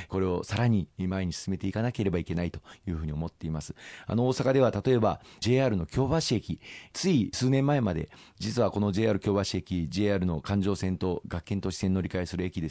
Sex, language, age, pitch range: male, Japanese, 40-59, 90-110 Hz